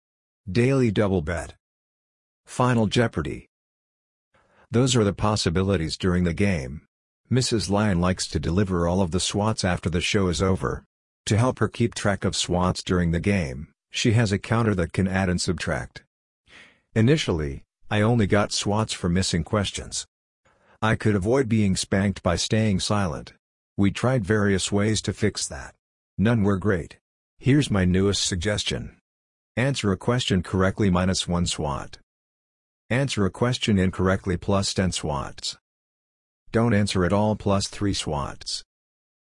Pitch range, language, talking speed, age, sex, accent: 90-110 Hz, English, 145 wpm, 50-69, male, American